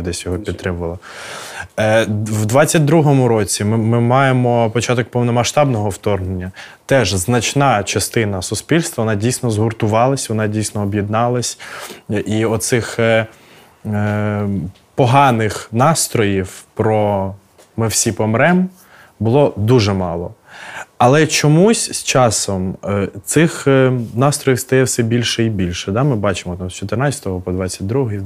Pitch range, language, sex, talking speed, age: 100-125 Hz, Ukrainian, male, 115 wpm, 20-39